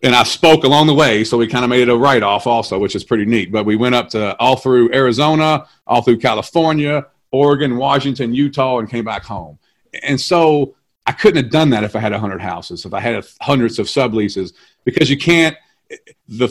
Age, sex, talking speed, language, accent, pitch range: 40-59, male, 220 wpm, English, American, 115-155 Hz